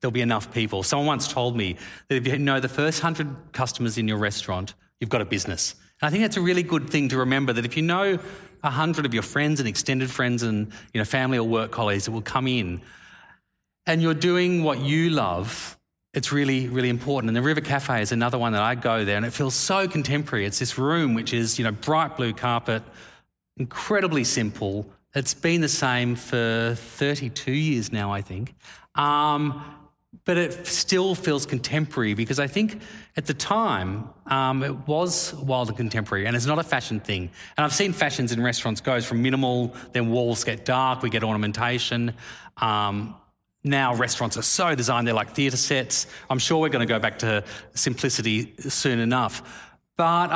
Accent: Australian